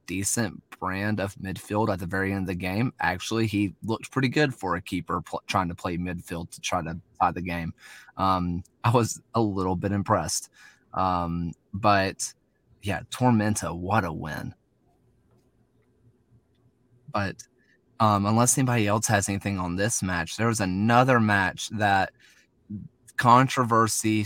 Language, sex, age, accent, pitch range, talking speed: English, male, 20-39, American, 95-115 Hz, 150 wpm